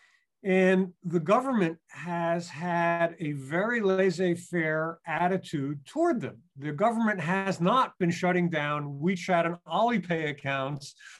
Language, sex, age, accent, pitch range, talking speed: English, male, 50-69, American, 155-200 Hz, 120 wpm